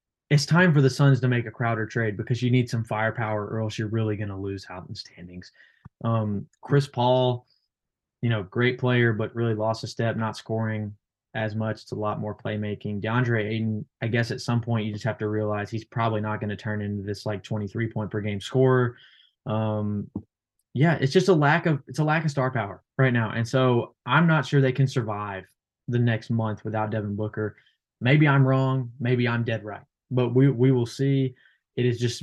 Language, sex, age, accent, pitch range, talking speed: English, male, 20-39, American, 110-130 Hz, 210 wpm